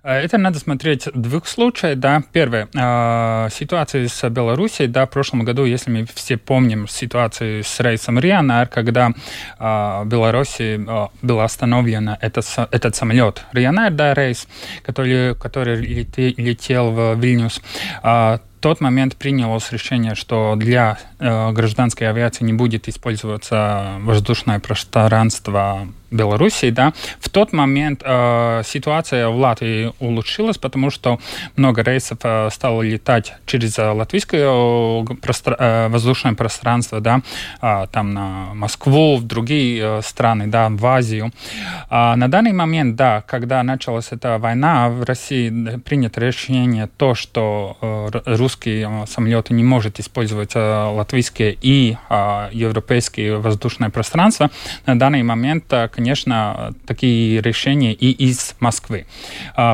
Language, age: Russian, 20-39